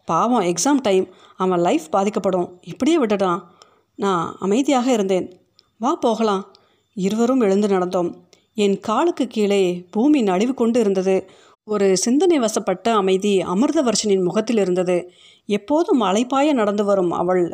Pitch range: 190-245 Hz